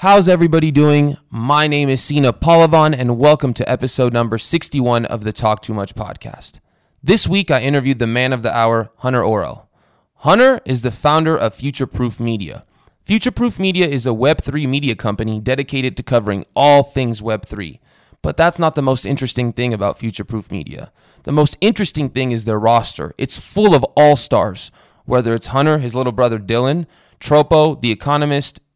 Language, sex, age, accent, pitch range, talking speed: English, male, 20-39, American, 115-150 Hz, 180 wpm